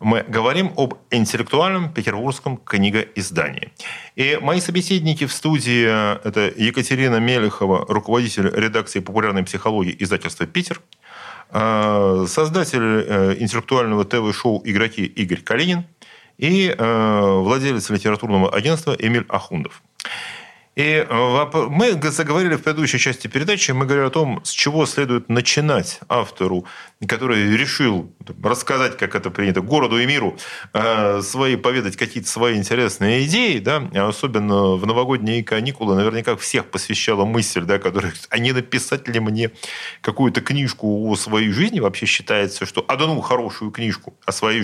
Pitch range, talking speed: 105-140 Hz, 125 wpm